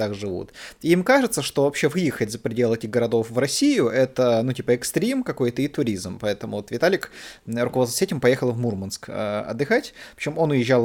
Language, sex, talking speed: Russian, male, 190 wpm